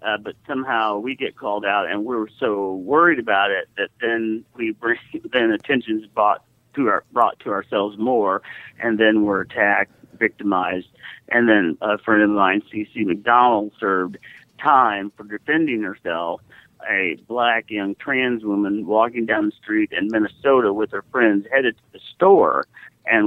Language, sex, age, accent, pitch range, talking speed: English, male, 50-69, American, 100-115 Hz, 165 wpm